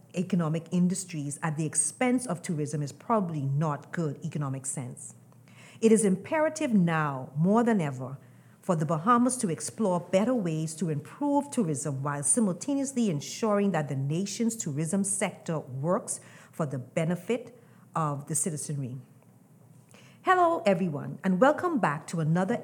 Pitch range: 150-210 Hz